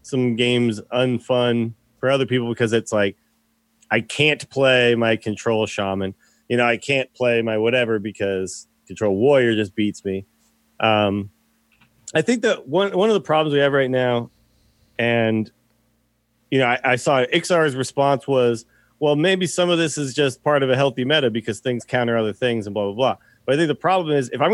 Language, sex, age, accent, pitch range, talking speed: English, male, 30-49, American, 115-140 Hz, 195 wpm